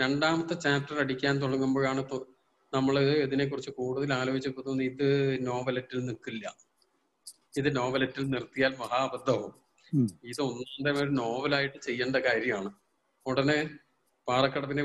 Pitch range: 130-150 Hz